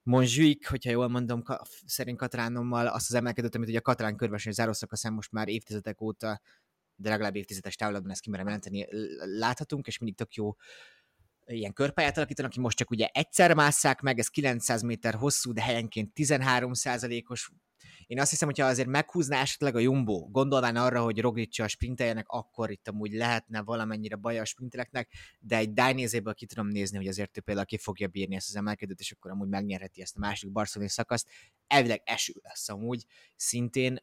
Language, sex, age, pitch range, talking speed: Hungarian, male, 20-39, 105-125 Hz, 180 wpm